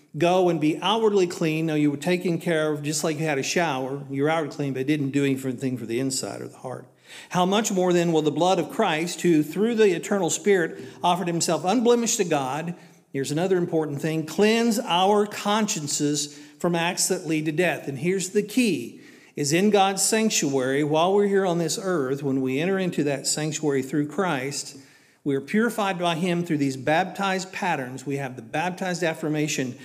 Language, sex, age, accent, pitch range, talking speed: English, male, 50-69, American, 140-180 Hz, 195 wpm